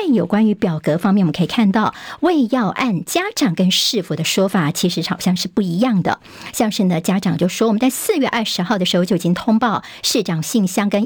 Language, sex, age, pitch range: Chinese, male, 50-69, 185-245 Hz